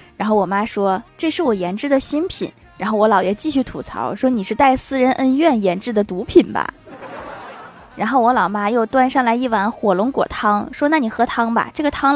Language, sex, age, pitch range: Chinese, female, 20-39, 195-255 Hz